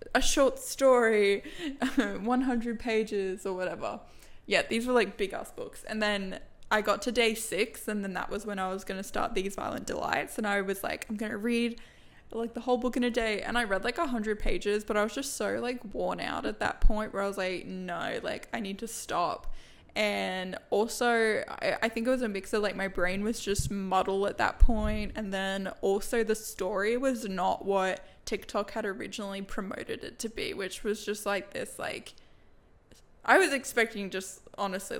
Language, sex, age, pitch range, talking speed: English, female, 10-29, 200-235 Hz, 205 wpm